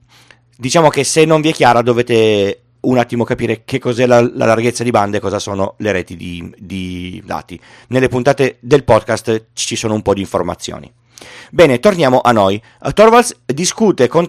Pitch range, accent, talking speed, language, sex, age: 110-155 Hz, native, 180 wpm, Italian, male, 40-59